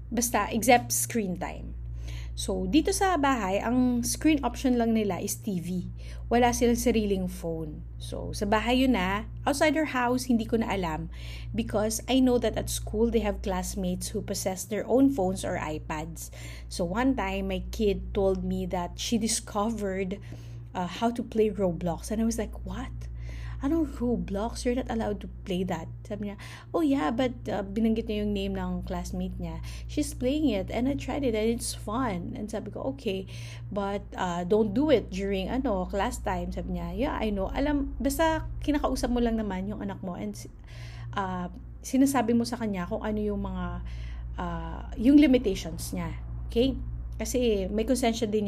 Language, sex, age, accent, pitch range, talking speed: English, female, 20-39, Filipino, 170-240 Hz, 180 wpm